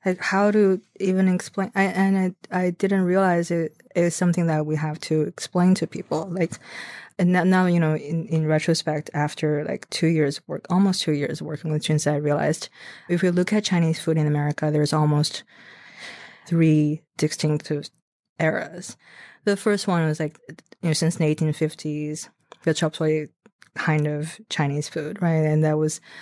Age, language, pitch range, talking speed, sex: 20-39, English, 150-180 Hz, 180 wpm, female